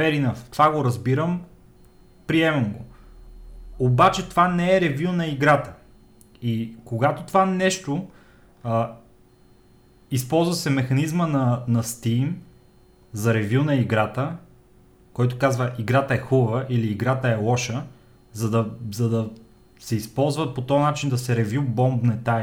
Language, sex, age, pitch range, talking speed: Bulgarian, male, 30-49, 115-150 Hz, 135 wpm